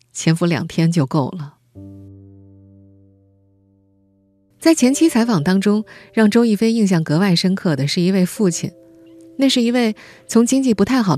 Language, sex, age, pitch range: Chinese, female, 20-39, 145-215 Hz